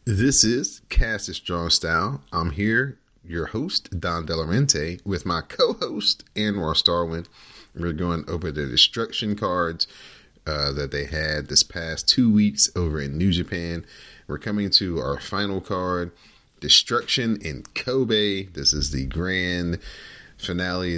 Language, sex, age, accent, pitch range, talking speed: English, male, 30-49, American, 80-105 Hz, 145 wpm